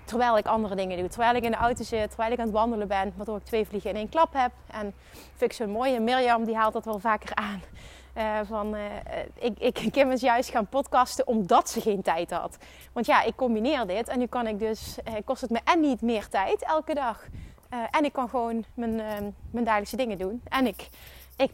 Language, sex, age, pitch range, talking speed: Dutch, female, 30-49, 210-255 Hz, 245 wpm